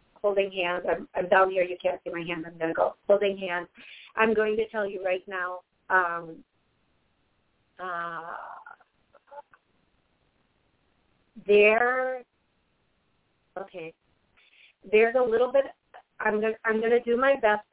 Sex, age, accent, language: female, 30-49, American, English